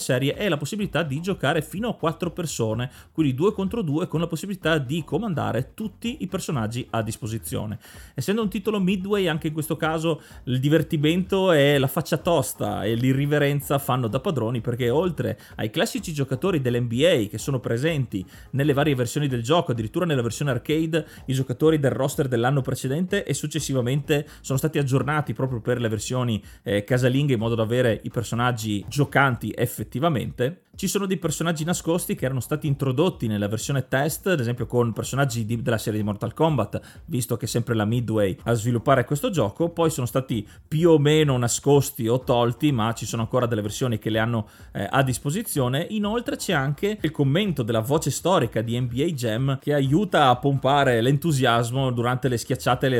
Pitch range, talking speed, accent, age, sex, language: 120-160 Hz, 180 wpm, native, 30-49, male, Italian